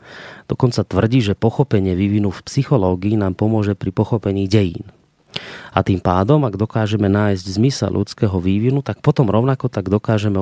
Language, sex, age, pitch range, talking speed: Slovak, male, 30-49, 100-125 Hz, 150 wpm